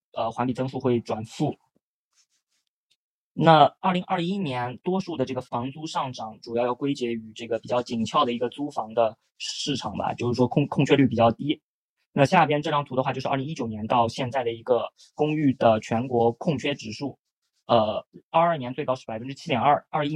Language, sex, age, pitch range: Chinese, male, 20-39, 120-145 Hz